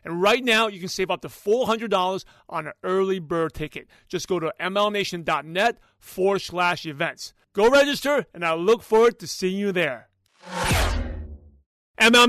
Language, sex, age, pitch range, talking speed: English, male, 30-49, 175-225 Hz, 155 wpm